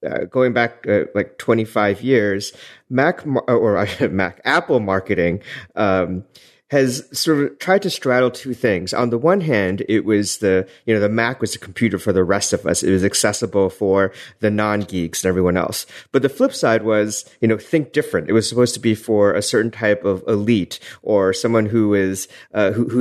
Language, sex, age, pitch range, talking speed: English, male, 30-49, 100-125 Hz, 205 wpm